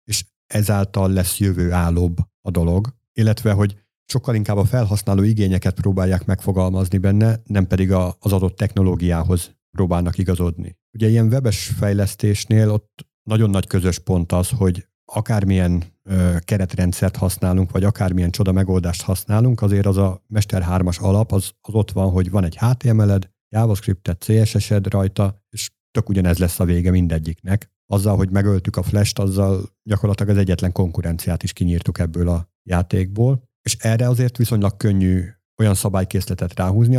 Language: Hungarian